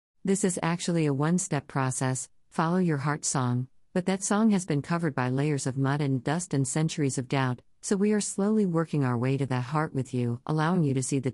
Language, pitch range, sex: English, 130-165 Hz, female